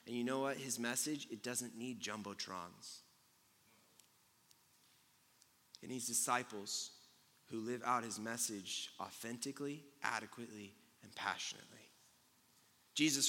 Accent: American